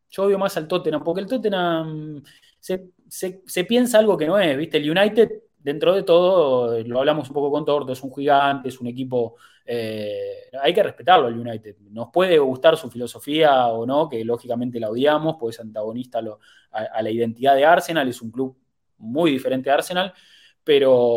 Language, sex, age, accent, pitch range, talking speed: English, male, 20-39, Argentinian, 120-175 Hz, 200 wpm